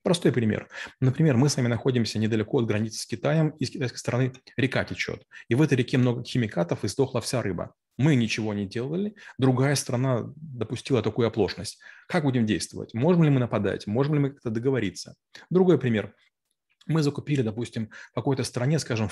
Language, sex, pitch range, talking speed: Russian, male, 110-135 Hz, 180 wpm